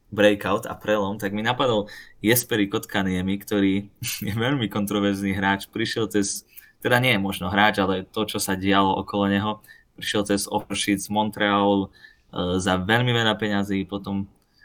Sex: male